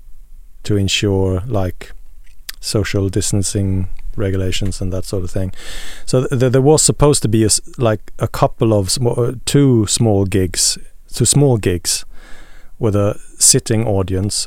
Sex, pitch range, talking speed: male, 100-115 Hz, 145 wpm